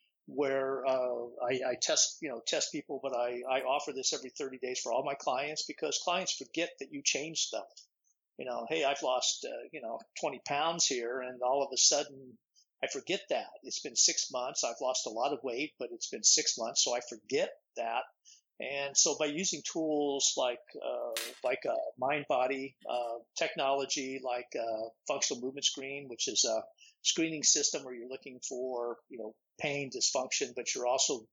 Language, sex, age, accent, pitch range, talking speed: English, male, 50-69, American, 125-155 Hz, 195 wpm